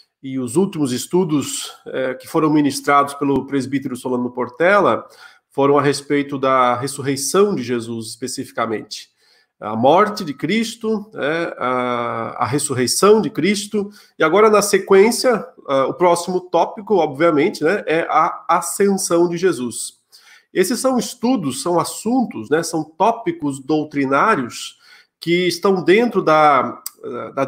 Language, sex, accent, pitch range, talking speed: Portuguese, male, Brazilian, 135-200 Hz, 120 wpm